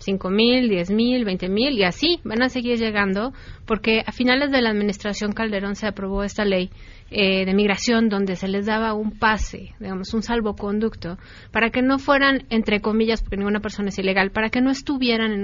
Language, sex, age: Spanish, female, 30-49